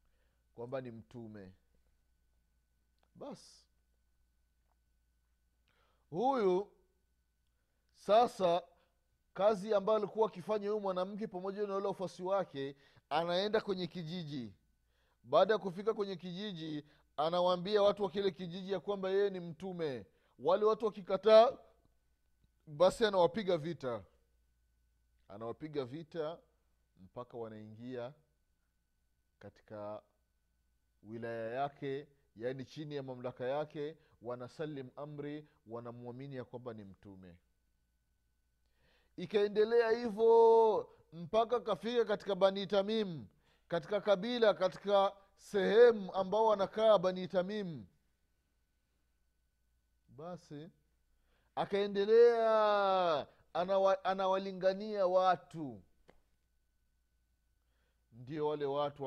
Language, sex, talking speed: Swahili, male, 80 wpm